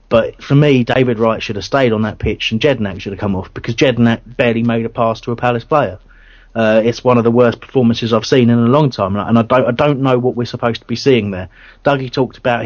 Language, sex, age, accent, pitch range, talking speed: English, male, 30-49, British, 110-130 Hz, 265 wpm